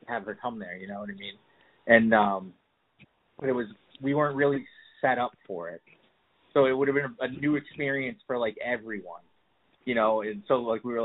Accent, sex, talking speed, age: American, male, 210 wpm, 20-39